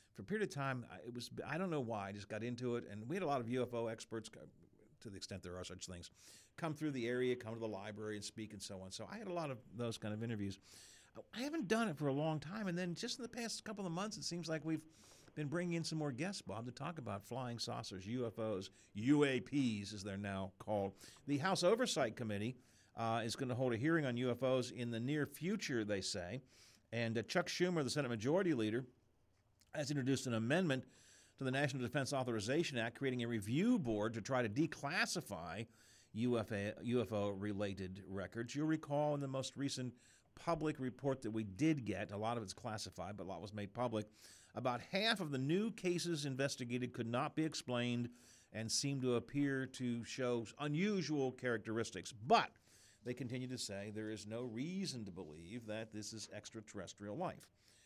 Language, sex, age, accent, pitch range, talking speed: English, male, 50-69, American, 105-145 Hz, 205 wpm